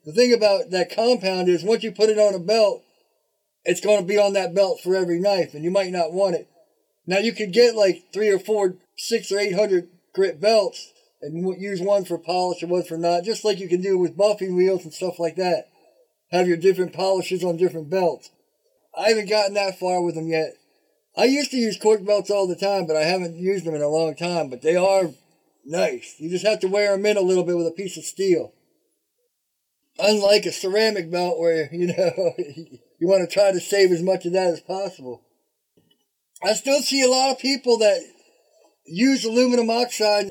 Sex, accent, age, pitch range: male, American, 50-69, 180-230 Hz